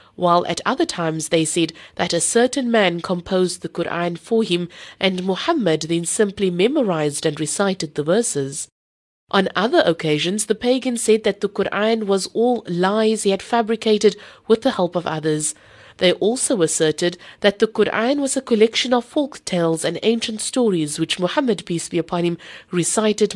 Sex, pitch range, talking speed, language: female, 170-230 Hz, 170 wpm, English